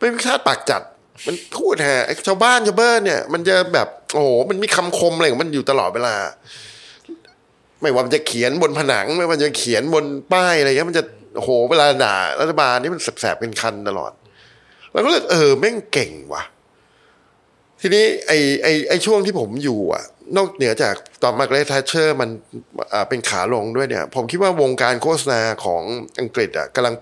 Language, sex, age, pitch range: Thai, male, 20-39, 120-170 Hz